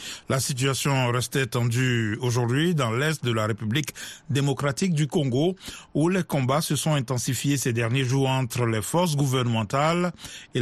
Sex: male